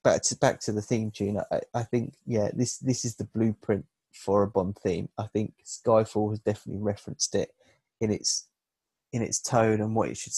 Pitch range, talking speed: 105-120 Hz, 215 wpm